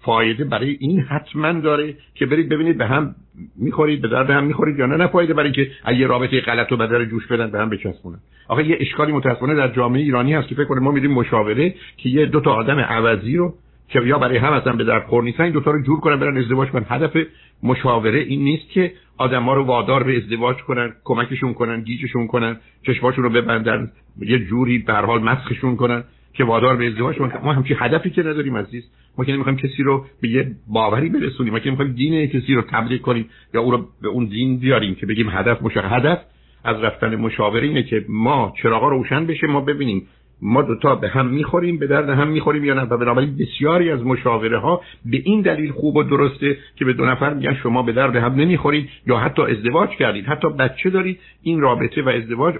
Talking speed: 210 wpm